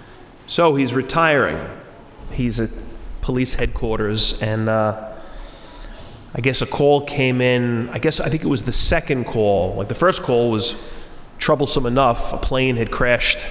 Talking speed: 155 wpm